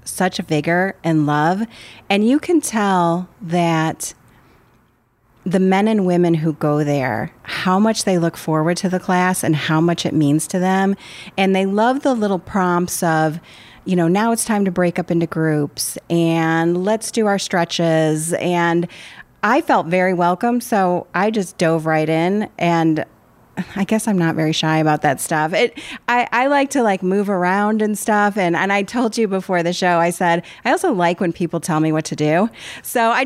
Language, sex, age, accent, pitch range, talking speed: English, female, 30-49, American, 165-210 Hz, 190 wpm